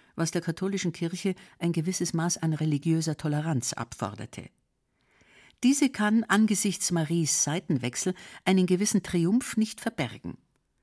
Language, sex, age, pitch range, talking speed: German, female, 50-69, 150-200 Hz, 115 wpm